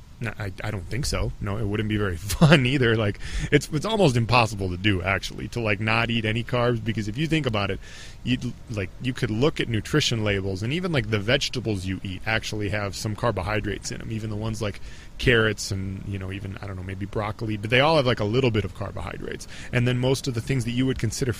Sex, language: male, English